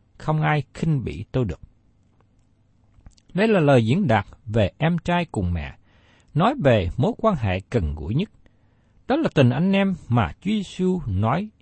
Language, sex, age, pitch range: Vietnamese, male, 60-79, 105-160 Hz